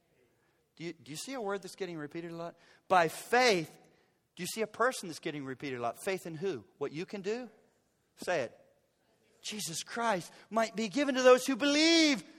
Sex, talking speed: male, 195 wpm